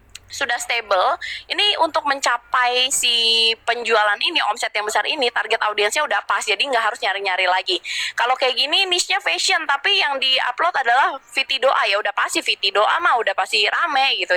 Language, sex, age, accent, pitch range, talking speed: Indonesian, female, 20-39, native, 210-290 Hz, 175 wpm